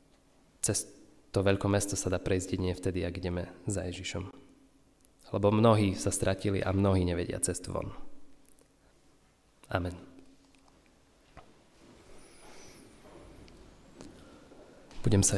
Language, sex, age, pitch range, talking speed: Slovak, male, 20-39, 95-105 Hz, 100 wpm